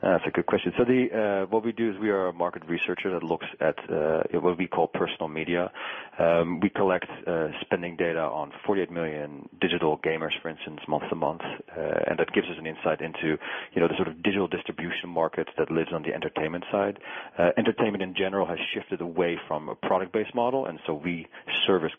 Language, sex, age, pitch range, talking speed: English, male, 30-49, 80-95 Hz, 215 wpm